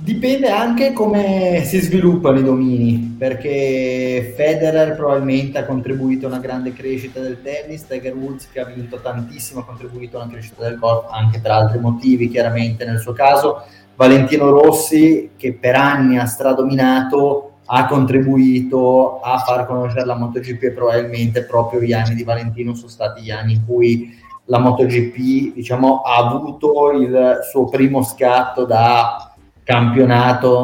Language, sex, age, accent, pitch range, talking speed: Italian, male, 20-39, native, 120-135 Hz, 150 wpm